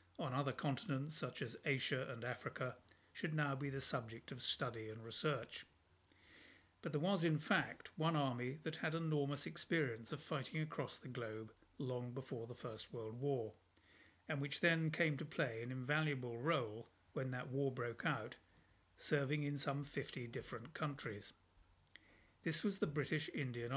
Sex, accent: male, British